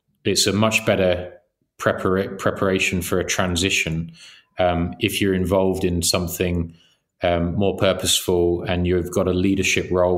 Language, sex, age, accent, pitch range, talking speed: English, male, 30-49, British, 85-95 Hz, 140 wpm